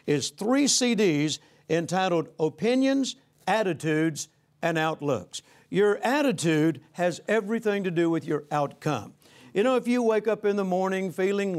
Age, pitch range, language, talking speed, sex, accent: 60-79, 155-205 Hz, English, 140 wpm, male, American